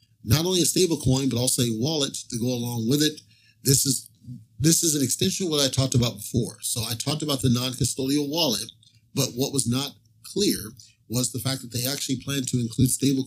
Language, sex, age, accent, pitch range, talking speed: English, male, 40-59, American, 115-140 Hz, 215 wpm